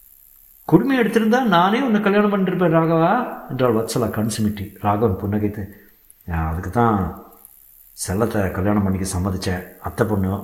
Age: 60-79